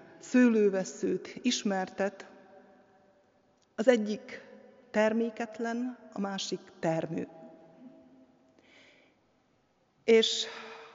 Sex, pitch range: female, 205-250 Hz